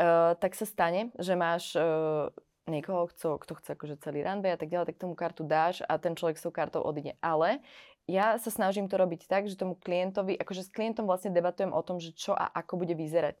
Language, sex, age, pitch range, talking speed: Slovak, female, 20-39, 165-195 Hz, 220 wpm